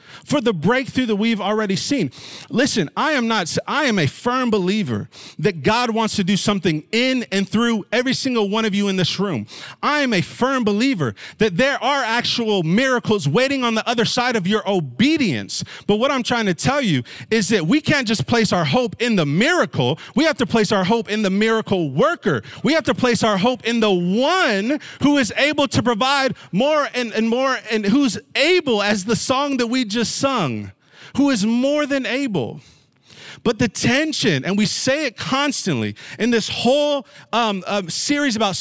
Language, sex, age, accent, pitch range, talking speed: English, male, 30-49, American, 190-255 Hz, 195 wpm